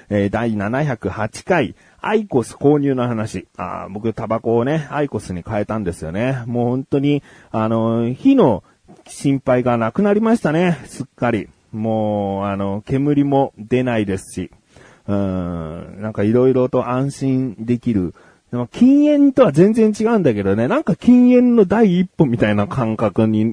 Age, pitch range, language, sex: 30-49, 105-175 Hz, Japanese, male